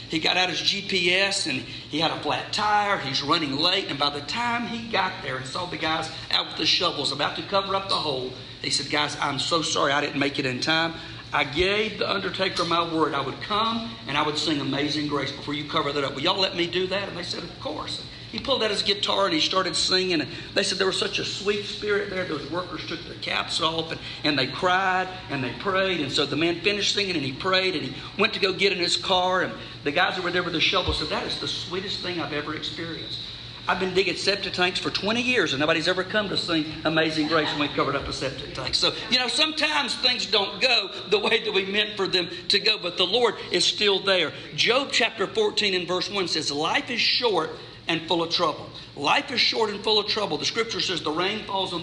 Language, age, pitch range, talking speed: English, 50-69, 150-195 Hz, 255 wpm